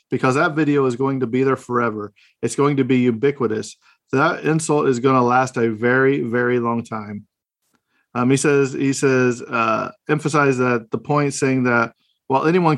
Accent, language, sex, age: American, English, male, 40-59